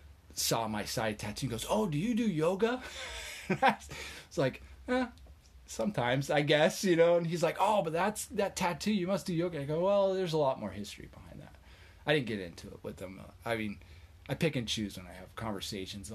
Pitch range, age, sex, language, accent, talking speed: 85-120 Hz, 30-49, male, English, American, 220 wpm